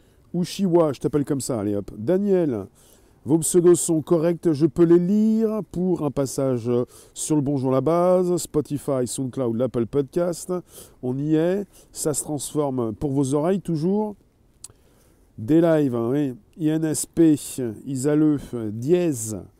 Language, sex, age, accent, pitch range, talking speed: French, male, 40-59, French, 125-170 Hz, 140 wpm